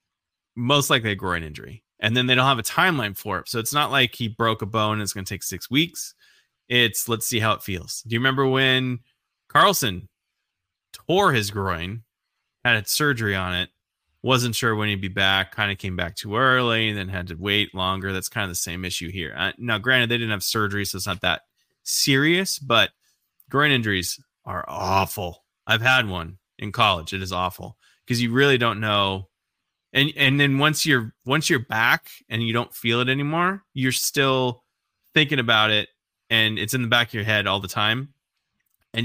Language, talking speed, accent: English, 205 wpm, American